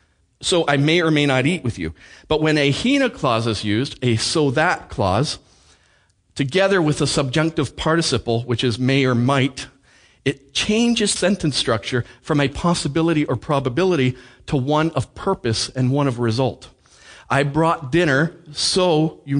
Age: 40-59